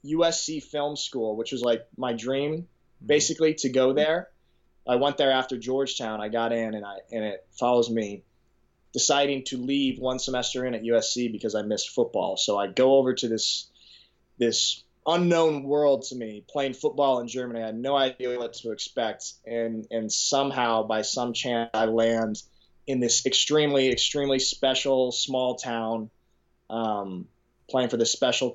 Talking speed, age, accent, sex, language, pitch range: 170 wpm, 20-39, American, male, English, 110-135 Hz